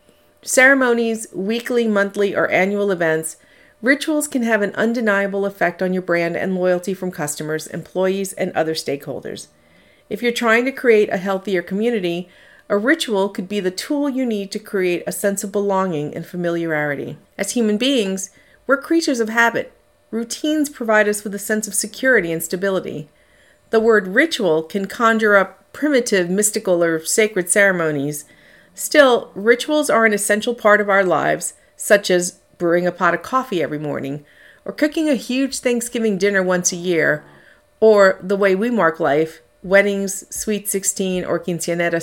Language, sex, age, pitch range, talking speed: English, female, 40-59, 180-230 Hz, 160 wpm